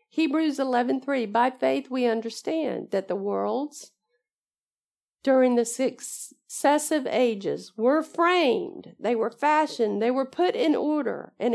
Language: English